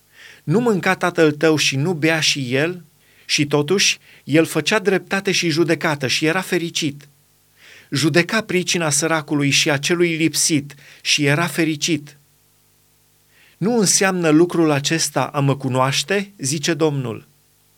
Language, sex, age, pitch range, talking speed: Romanian, male, 30-49, 140-175 Hz, 125 wpm